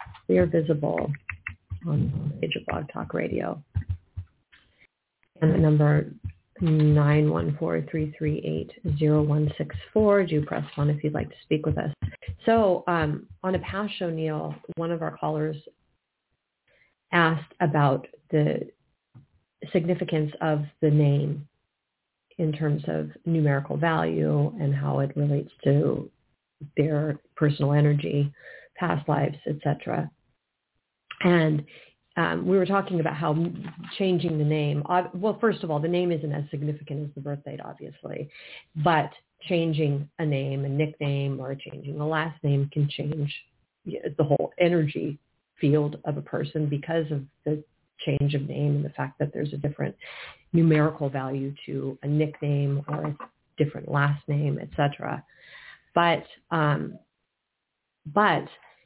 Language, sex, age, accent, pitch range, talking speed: English, female, 30-49, American, 145-160 Hz, 135 wpm